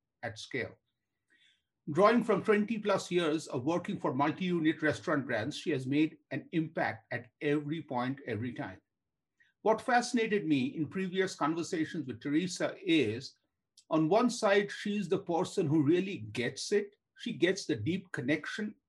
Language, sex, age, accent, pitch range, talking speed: English, male, 50-69, Indian, 140-190 Hz, 150 wpm